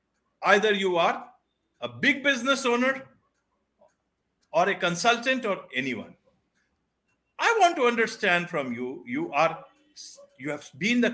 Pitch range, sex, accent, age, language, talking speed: 180-250 Hz, male, Indian, 50-69, English, 130 wpm